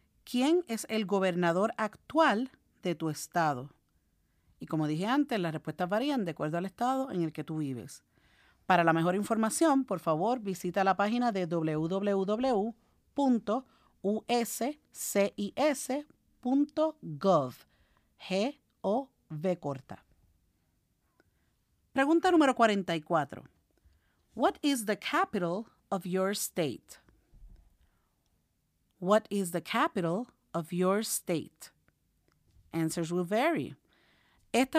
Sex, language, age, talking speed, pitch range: female, Spanish, 50-69, 100 wpm, 170-240 Hz